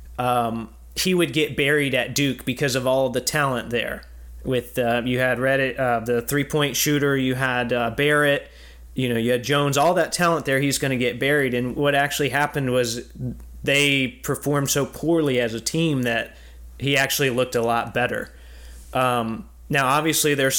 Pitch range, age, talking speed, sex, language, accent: 120-145 Hz, 30-49, 185 wpm, male, English, American